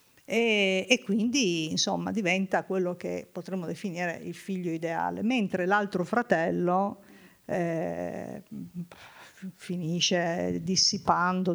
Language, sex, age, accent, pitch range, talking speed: Italian, female, 50-69, native, 175-205 Hz, 95 wpm